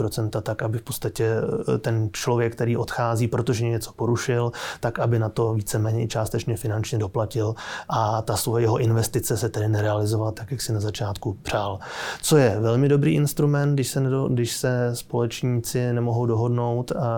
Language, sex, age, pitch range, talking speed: Czech, male, 20-39, 110-125 Hz, 150 wpm